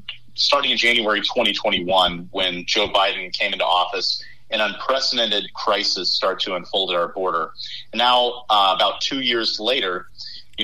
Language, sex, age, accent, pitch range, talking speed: English, male, 30-49, American, 110-125 Hz, 150 wpm